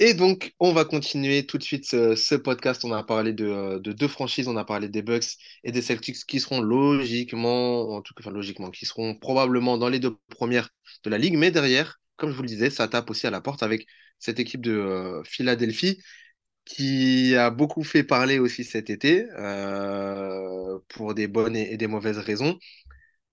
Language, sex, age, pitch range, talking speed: French, male, 20-39, 105-130 Hz, 200 wpm